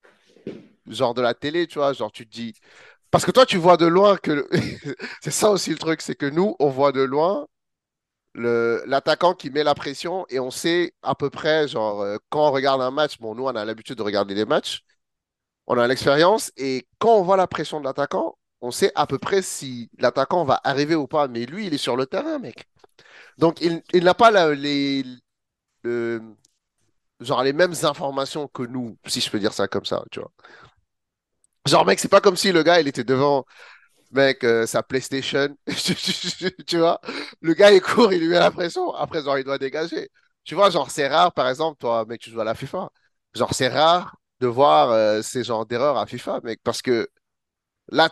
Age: 30-49